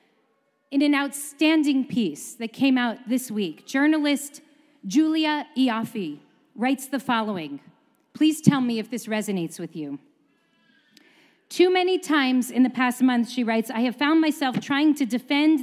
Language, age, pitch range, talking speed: English, 40-59, 245-310 Hz, 150 wpm